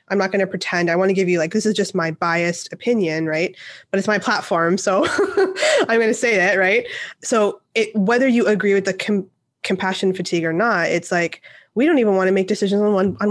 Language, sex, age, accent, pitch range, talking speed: English, female, 20-39, American, 175-210 Hz, 225 wpm